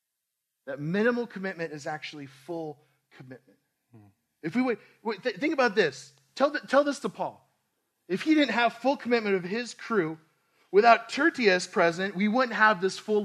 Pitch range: 150-215 Hz